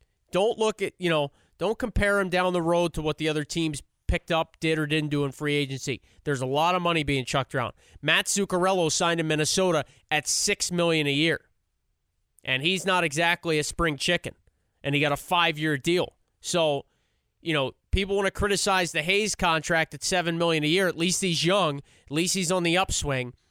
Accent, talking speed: American, 205 wpm